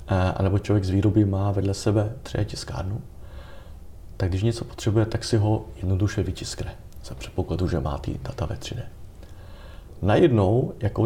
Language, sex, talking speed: Czech, male, 150 wpm